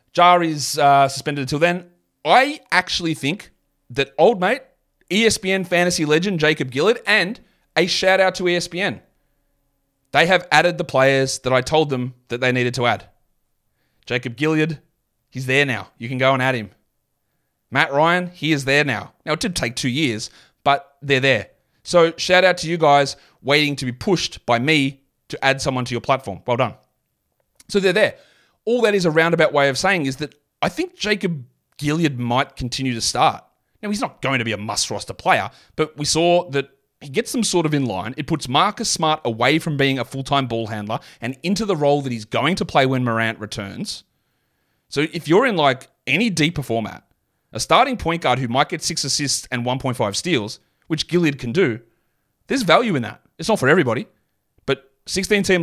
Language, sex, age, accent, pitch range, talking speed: English, male, 30-49, Australian, 130-175 Hz, 195 wpm